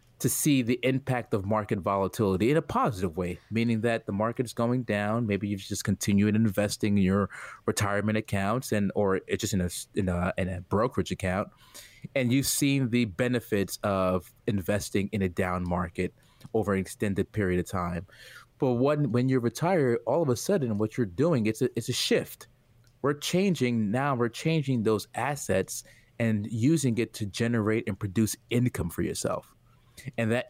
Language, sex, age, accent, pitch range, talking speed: English, male, 30-49, American, 105-130 Hz, 180 wpm